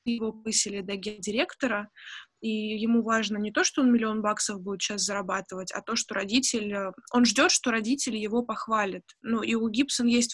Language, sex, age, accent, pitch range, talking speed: Russian, female, 20-39, native, 200-245 Hz, 180 wpm